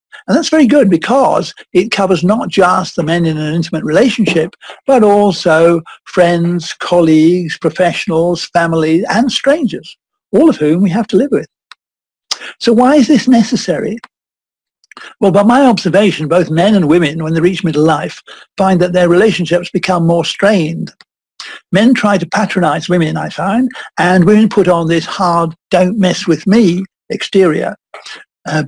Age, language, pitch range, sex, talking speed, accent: 60-79, English, 170-210 Hz, male, 155 wpm, British